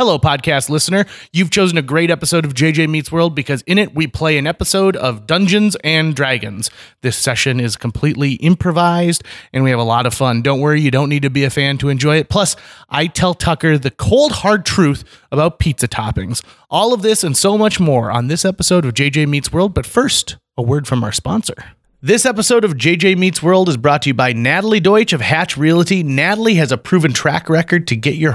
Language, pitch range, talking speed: English, 135-180 Hz, 220 wpm